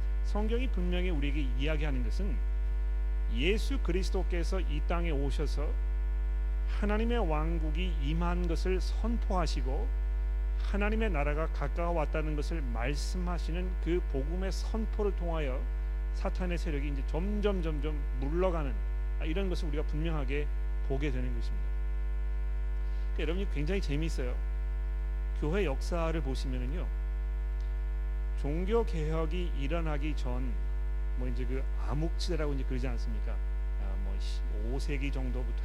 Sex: male